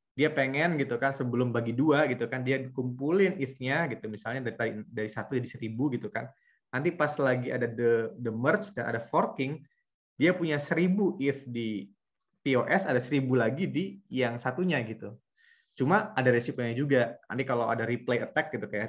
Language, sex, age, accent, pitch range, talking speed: Indonesian, male, 20-39, native, 115-135 Hz, 175 wpm